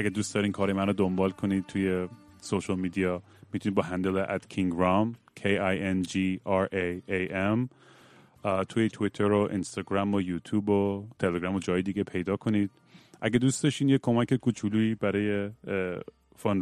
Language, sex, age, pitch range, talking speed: Persian, male, 30-49, 95-110 Hz, 135 wpm